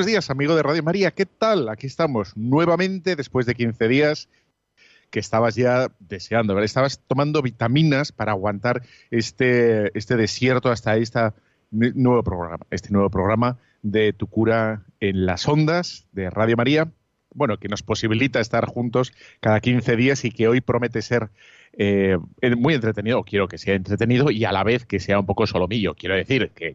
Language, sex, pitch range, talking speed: Spanish, male, 105-130 Hz, 170 wpm